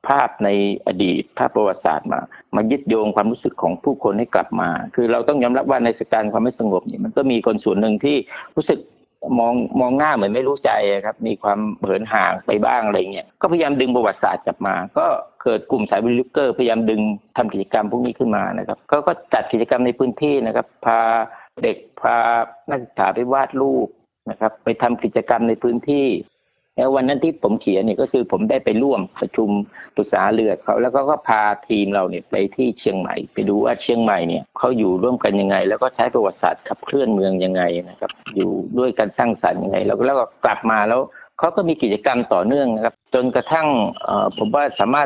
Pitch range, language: 105-125 Hz, Thai